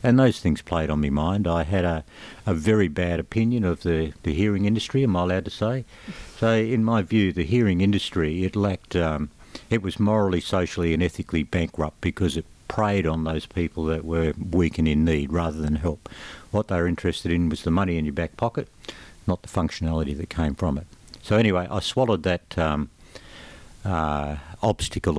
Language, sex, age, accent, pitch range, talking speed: English, male, 60-79, Australian, 80-105 Hz, 200 wpm